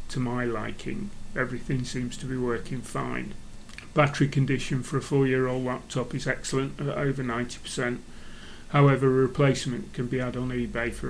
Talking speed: 160 wpm